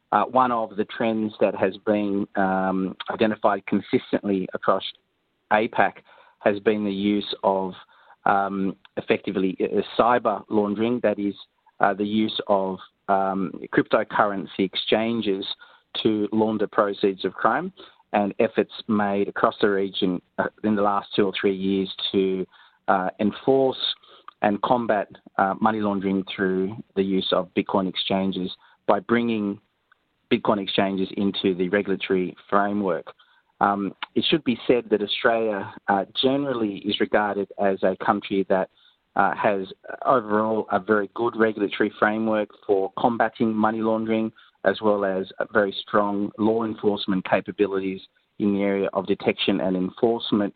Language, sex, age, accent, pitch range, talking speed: English, male, 30-49, Australian, 95-110 Hz, 135 wpm